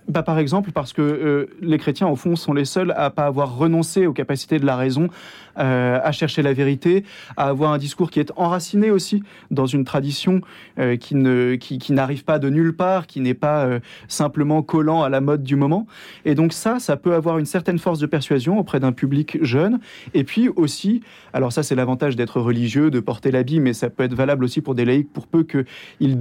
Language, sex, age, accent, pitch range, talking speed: French, male, 30-49, French, 135-175 Hz, 225 wpm